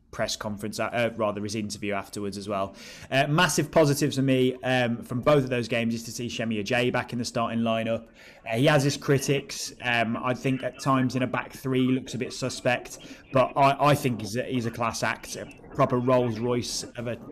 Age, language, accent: 20-39, English, British